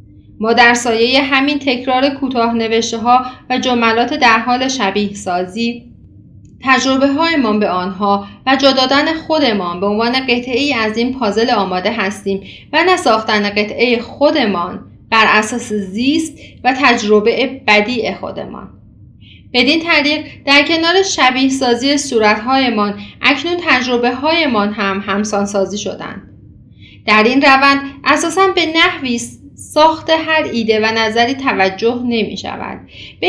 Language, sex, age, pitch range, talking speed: Persian, female, 30-49, 220-275 Hz, 120 wpm